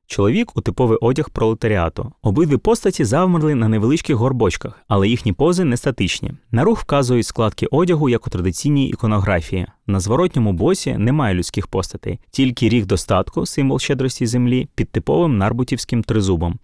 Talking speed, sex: 150 wpm, male